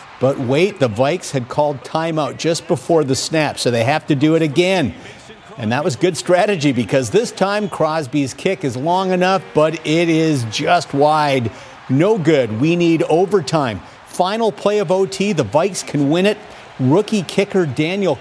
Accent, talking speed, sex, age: American, 175 wpm, male, 50-69